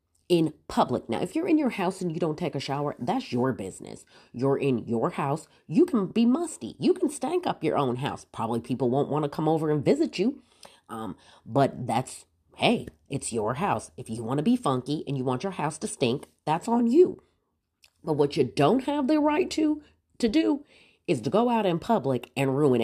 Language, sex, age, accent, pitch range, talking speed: English, female, 30-49, American, 120-180 Hz, 220 wpm